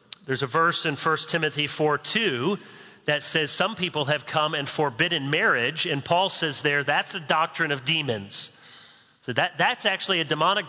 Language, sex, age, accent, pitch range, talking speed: English, male, 40-59, American, 150-200 Hz, 175 wpm